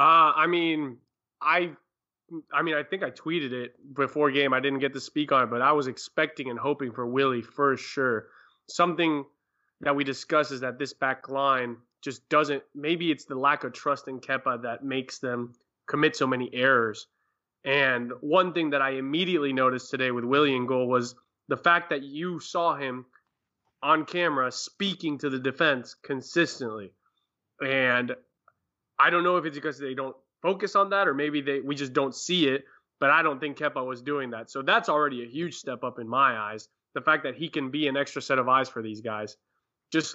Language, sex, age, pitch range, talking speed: English, male, 20-39, 130-150 Hz, 200 wpm